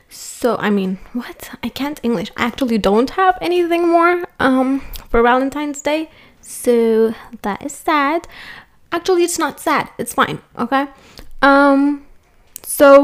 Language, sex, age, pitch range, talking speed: English, female, 20-39, 215-280 Hz, 140 wpm